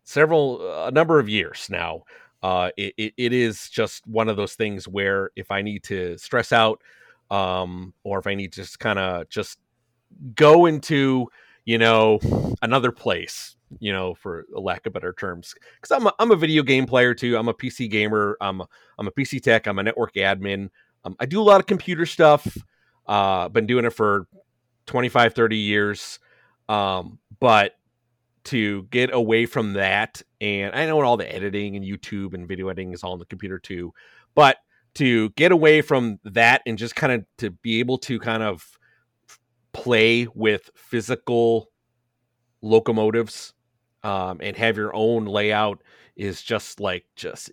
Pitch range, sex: 100-125 Hz, male